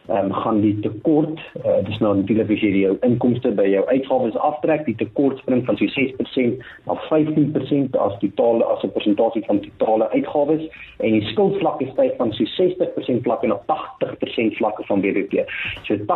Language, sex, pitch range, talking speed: English, male, 110-155 Hz, 170 wpm